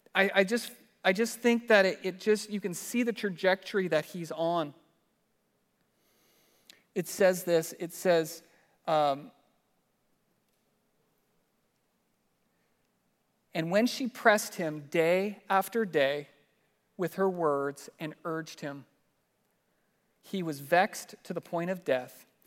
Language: English